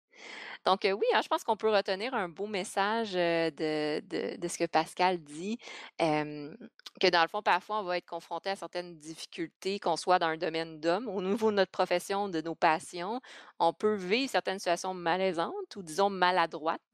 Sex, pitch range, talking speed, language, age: female, 165-195 Hz, 195 wpm, French, 20-39